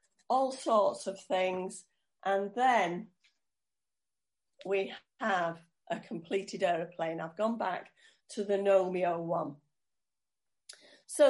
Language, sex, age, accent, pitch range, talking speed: English, female, 40-59, British, 185-255 Hz, 100 wpm